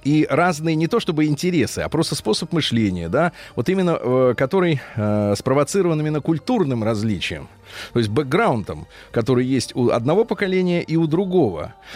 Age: 30-49